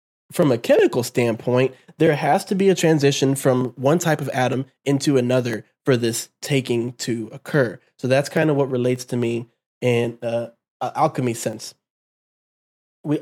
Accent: American